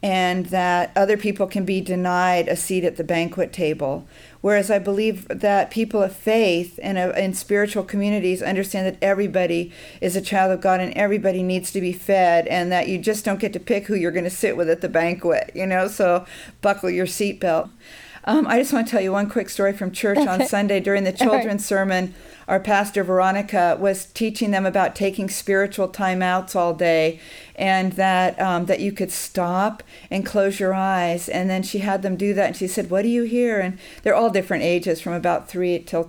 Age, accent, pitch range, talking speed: 50-69, American, 185-220 Hz, 210 wpm